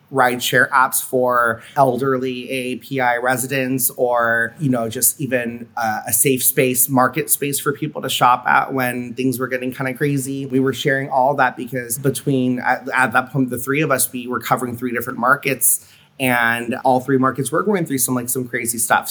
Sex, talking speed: male, 195 wpm